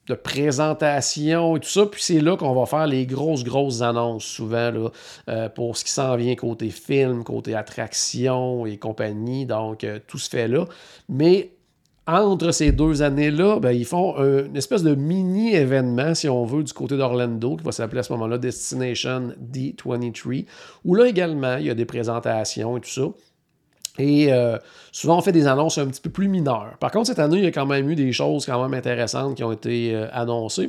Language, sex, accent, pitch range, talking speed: French, male, Canadian, 120-155 Hz, 200 wpm